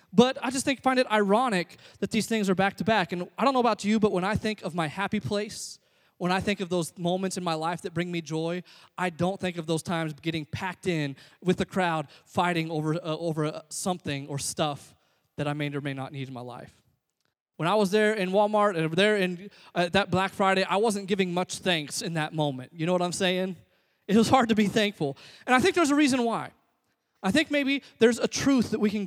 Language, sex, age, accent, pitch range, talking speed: English, male, 20-39, American, 175-225 Hz, 245 wpm